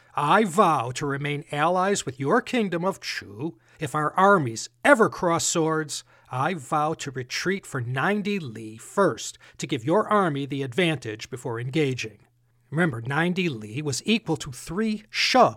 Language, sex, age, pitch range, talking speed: English, male, 40-59, 130-180 Hz, 155 wpm